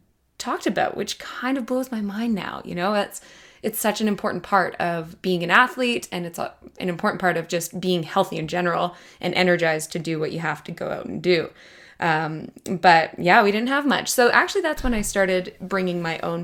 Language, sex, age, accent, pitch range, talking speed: English, female, 20-39, American, 170-200 Hz, 220 wpm